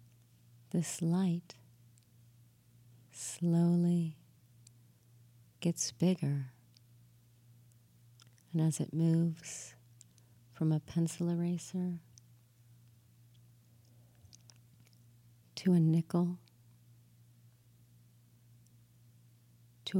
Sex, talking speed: female, 50 wpm